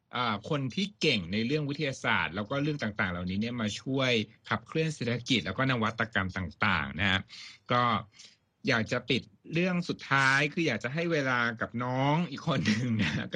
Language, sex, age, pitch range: Thai, male, 60-79, 110-145 Hz